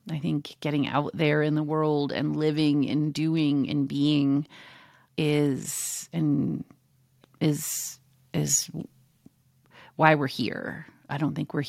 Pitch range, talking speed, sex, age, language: 145-180 Hz, 130 wpm, female, 30-49, English